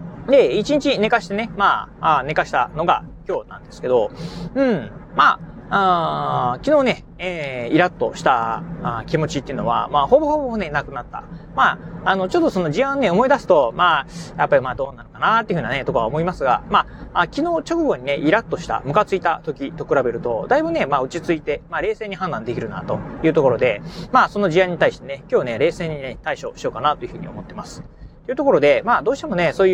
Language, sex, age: Japanese, male, 30-49